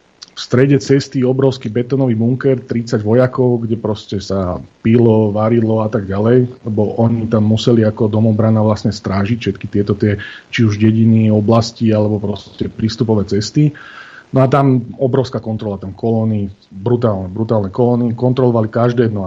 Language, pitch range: Slovak, 105-125 Hz